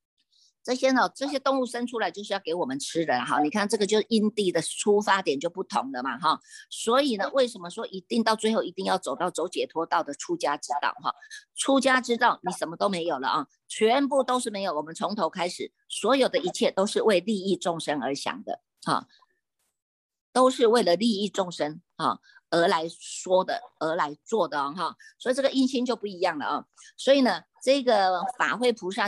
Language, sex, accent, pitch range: Chinese, female, American, 185-265 Hz